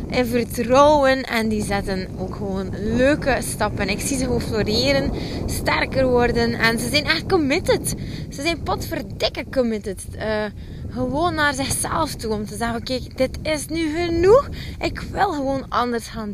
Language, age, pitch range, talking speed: Dutch, 20-39, 210-280 Hz, 160 wpm